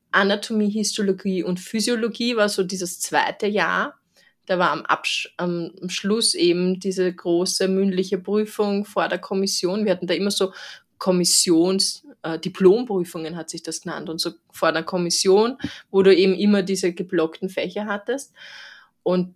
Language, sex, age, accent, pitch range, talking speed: German, female, 20-39, German, 175-210 Hz, 150 wpm